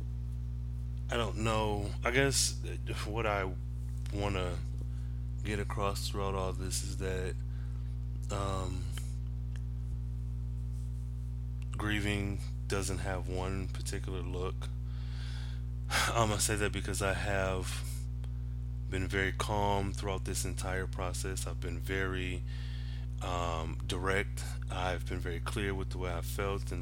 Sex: male